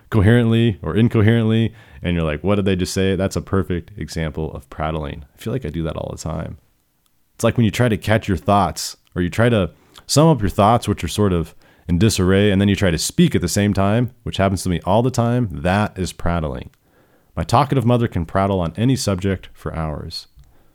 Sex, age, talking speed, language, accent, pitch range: male, 40-59, 230 wpm, English, American, 85-115 Hz